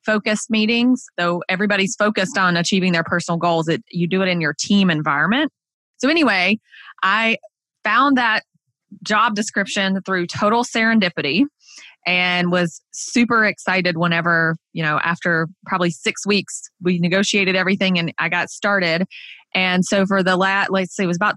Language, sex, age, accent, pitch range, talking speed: English, female, 20-39, American, 175-220 Hz, 160 wpm